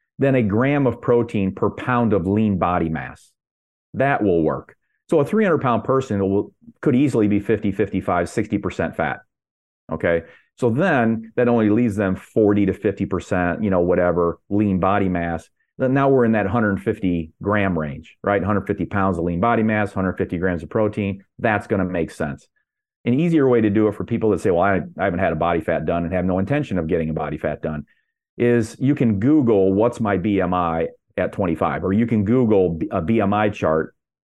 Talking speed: 195 wpm